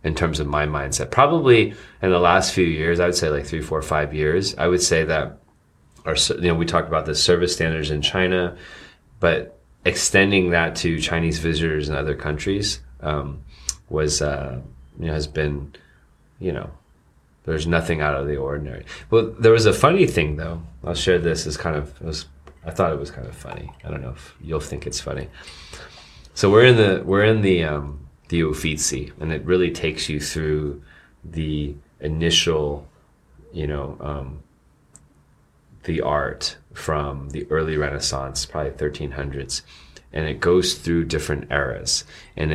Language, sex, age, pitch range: Chinese, male, 30-49, 70-85 Hz